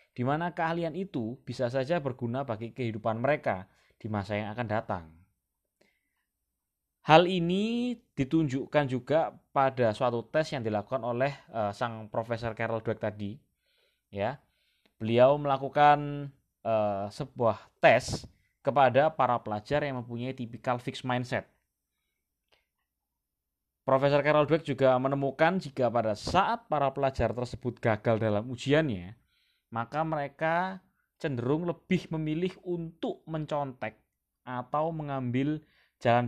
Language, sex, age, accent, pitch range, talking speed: Indonesian, male, 20-39, native, 110-145 Hz, 115 wpm